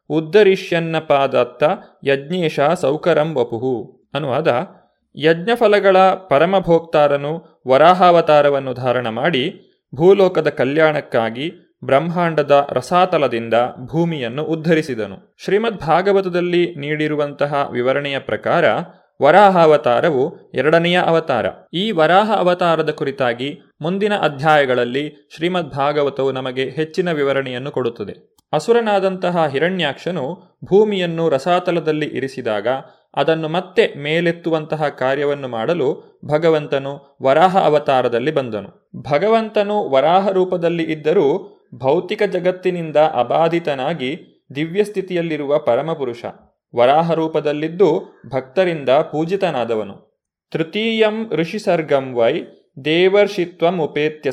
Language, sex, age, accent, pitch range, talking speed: Kannada, male, 30-49, native, 140-180 Hz, 75 wpm